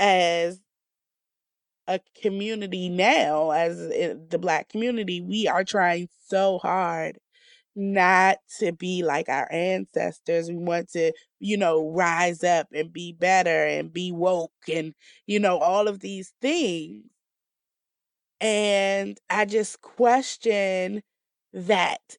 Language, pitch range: English, 170-210 Hz